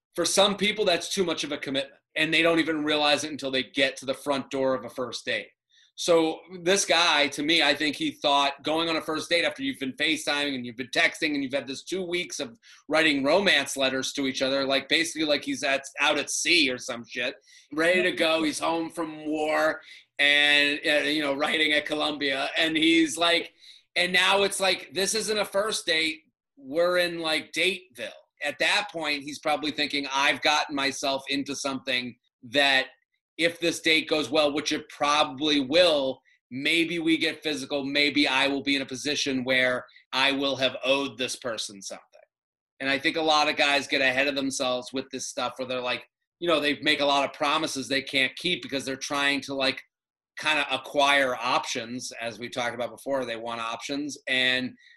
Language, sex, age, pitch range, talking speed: English, male, 30-49, 135-165 Hz, 205 wpm